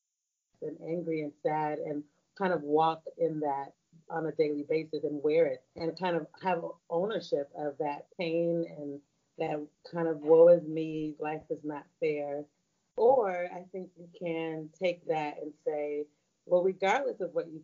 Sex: female